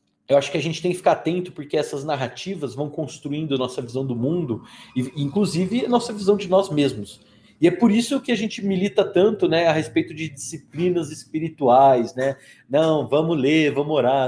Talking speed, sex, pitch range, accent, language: 195 wpm, male, 130-175 Hz, Brazilian, Portuguese